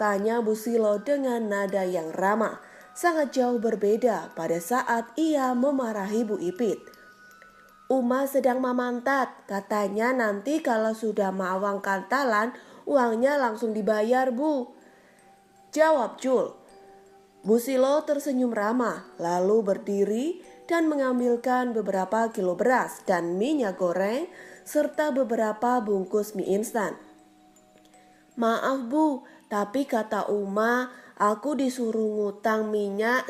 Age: 20-39